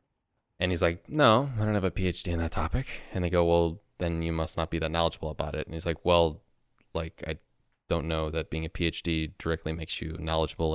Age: 20-39